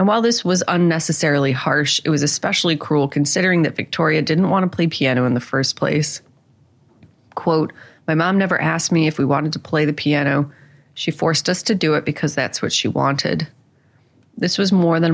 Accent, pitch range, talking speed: American, 140-170 Hz, 200 wpm